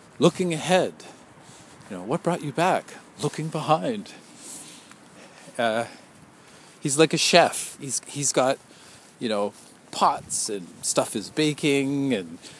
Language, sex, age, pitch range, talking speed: English, male, 40-59, 105-150 Hz, 125 wpm